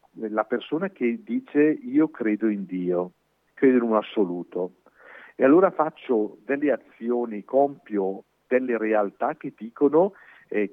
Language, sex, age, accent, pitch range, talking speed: Italian, male, 50-69, native, 105-140 Hz, 130 wpm